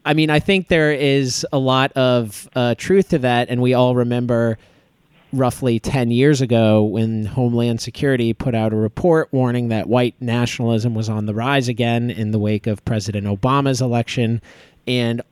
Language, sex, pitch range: English, male, 120-155 Hz